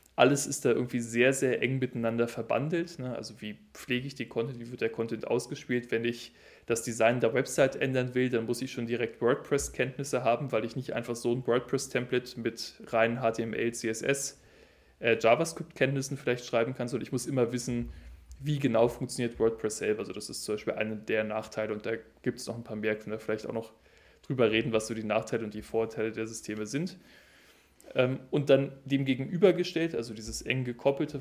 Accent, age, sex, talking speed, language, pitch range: German, 20-39, male, 195 wpm, German, 110-130 Hz